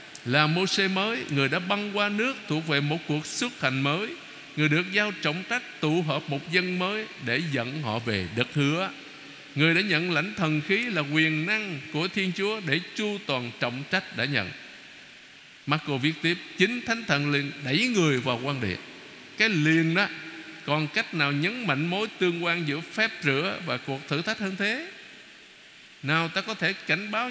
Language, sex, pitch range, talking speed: Vietnamese, male, 140-185 Hz, 195 wpm